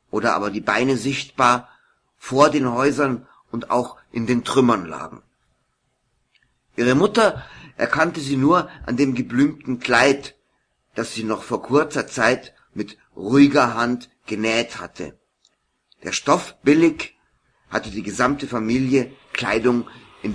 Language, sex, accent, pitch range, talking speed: German, male, German, 115-140 Hz, 125 wpm